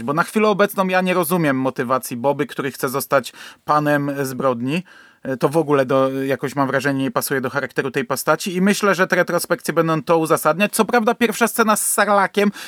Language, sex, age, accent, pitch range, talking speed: Polish, male, 30-49, native, 150-195 Hz, 190 wpm